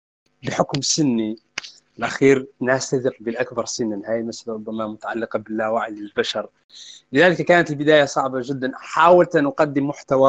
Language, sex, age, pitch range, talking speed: Arabic, male, 30-49, 120-145 Hz, 120 wpm